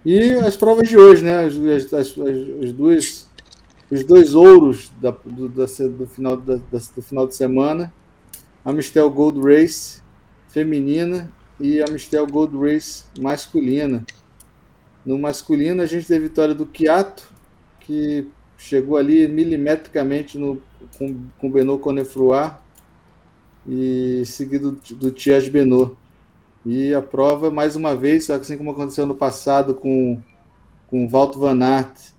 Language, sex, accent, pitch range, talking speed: Portuguese, male, Brazilian, 125-155 Hz, 135 wpm